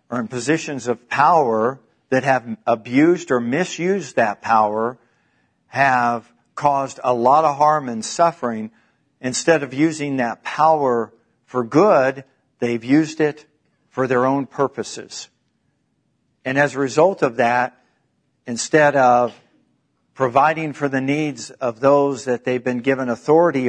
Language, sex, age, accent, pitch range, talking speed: English, male, 50-69, American, 120-145 Hz, 135 wpm